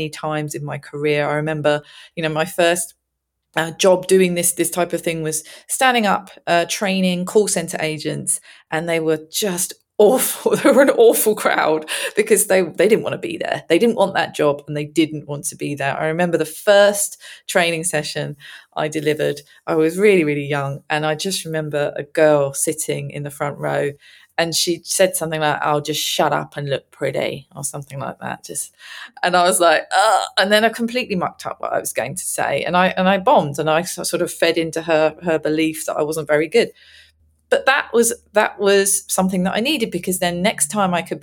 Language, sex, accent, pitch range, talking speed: English, female, British, 155-190 Hz, 215 wpm